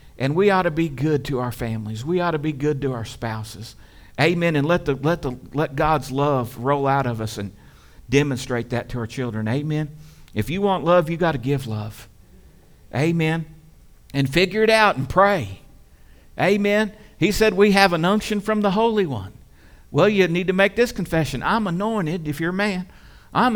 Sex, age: male, 50-69